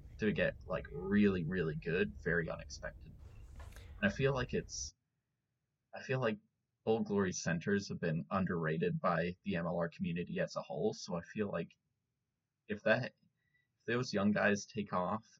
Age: 20-39